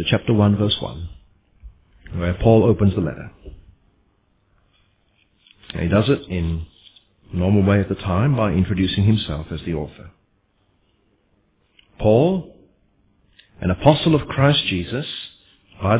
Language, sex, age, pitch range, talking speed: English, male, 40-59, 100-130 Hz, 125 wpm